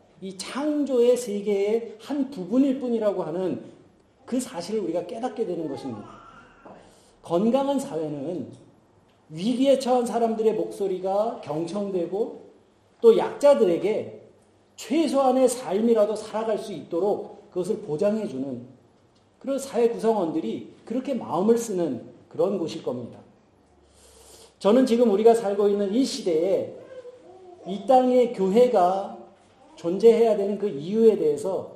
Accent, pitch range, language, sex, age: native, 180-260 Hz, Korean, male, 40-59